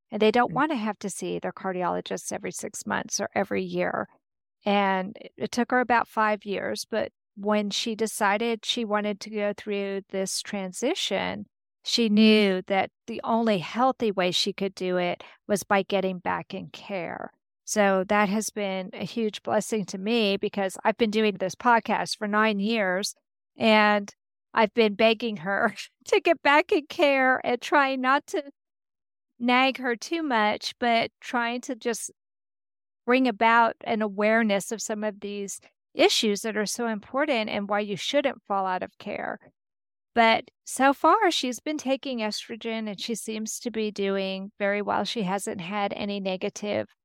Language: English